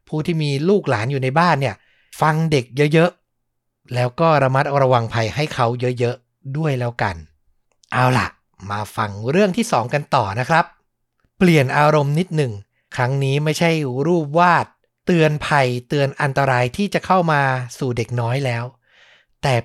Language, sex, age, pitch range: Thai, male, 60-79, 120-165 Hz